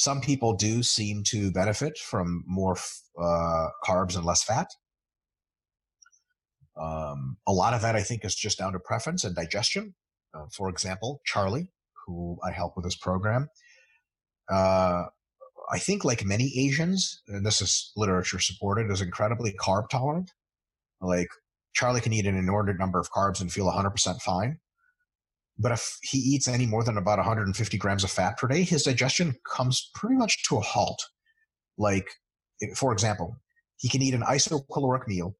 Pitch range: 95-135 Hz